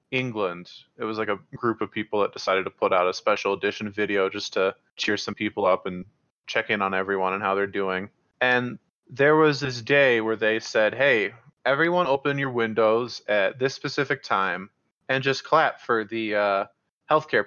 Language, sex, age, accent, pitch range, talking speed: English, male, 20-39, American, 100-130 Hz, 190 wpm